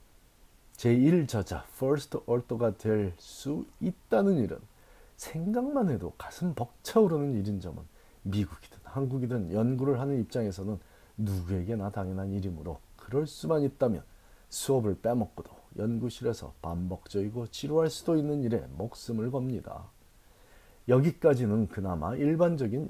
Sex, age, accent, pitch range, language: male, 40-59, native, 95-135 Hz, Korean